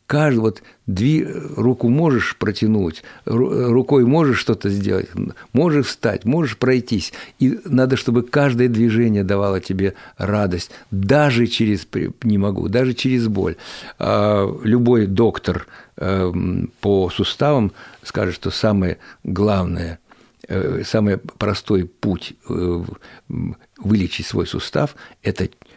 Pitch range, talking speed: 100-130 Hz, 100 wpm